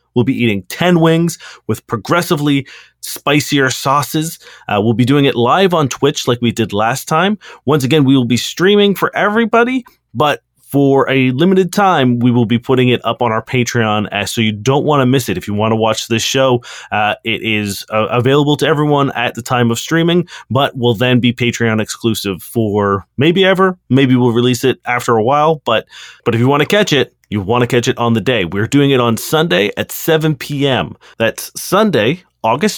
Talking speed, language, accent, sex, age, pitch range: 205 wpm, English, American, male, 30-49, 115-145 Hz